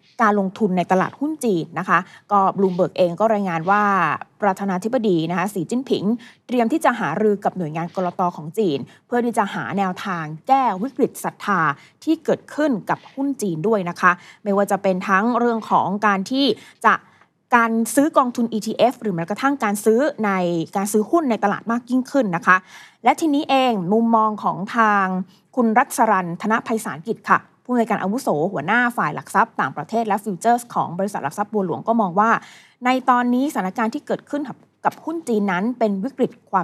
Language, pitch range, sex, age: Thai, 190-240 Hz, female, 20-39